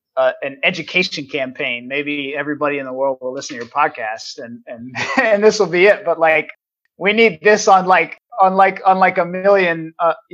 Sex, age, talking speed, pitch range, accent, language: male, 30-49, 195 wpm, 145-185 Hz, American, English